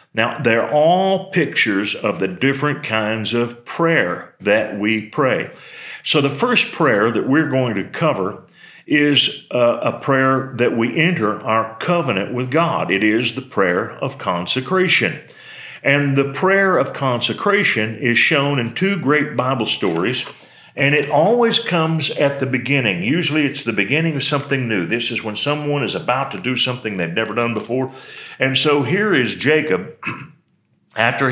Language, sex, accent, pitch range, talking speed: English, male, American, 115-145 Hz, 160 wpm